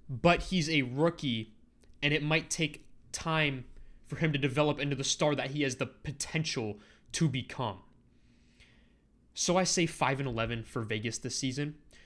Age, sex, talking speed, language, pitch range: 20-39, male, 155 wpm, English, 120-160 Hz